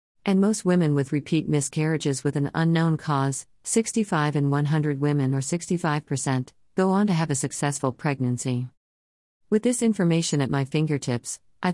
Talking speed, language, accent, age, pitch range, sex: 155 wpm, English, American, 50-69, 130-165 Hz, female